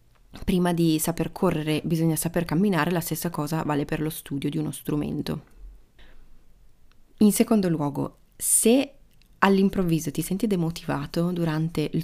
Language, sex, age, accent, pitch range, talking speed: Italian, female, 20-39, native, 160-195 Hz, 135 wpm